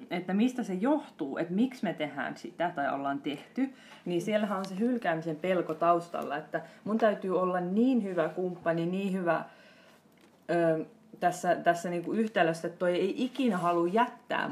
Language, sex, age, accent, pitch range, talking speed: Finnish, female, 30-49, native, 160-210 Hz, 160 wpm